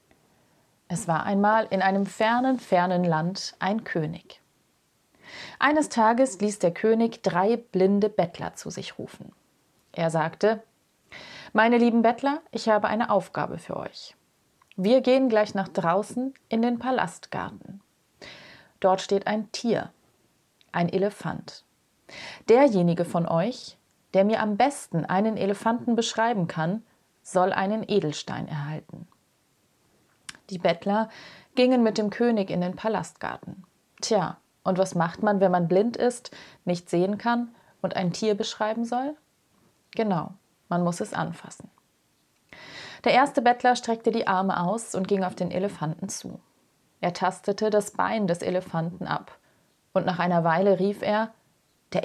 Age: 30-49